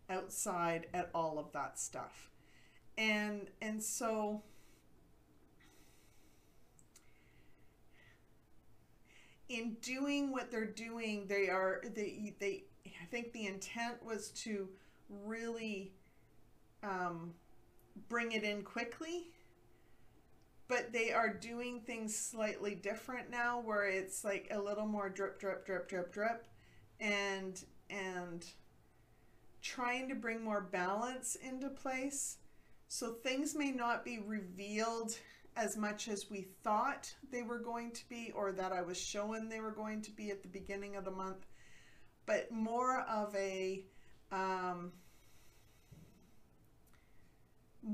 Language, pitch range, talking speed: English, 190-230 Hz, 120 wpm